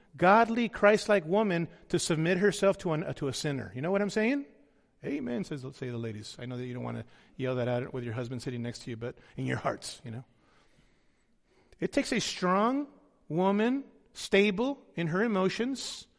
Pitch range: 155-220 Hz